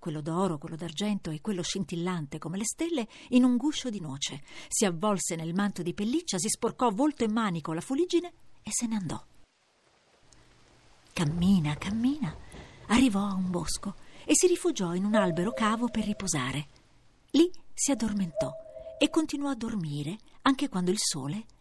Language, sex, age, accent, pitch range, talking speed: Italian, female, 50-69, native, 170-275 Hz, 160 wpm